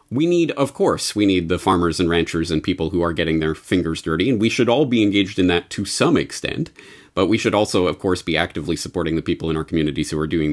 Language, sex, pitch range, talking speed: English, male, 90-115 Hz, 260 wpm